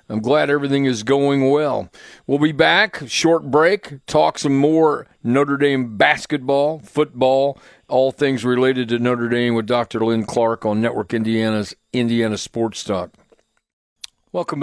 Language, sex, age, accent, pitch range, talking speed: English, male, 50-69, American, 125-145 Hz, 145 wpm